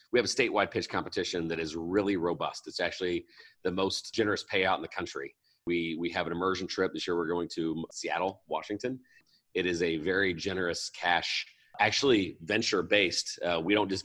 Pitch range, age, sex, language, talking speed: 85-110 Hz, 30-49, male, English, 190 wpm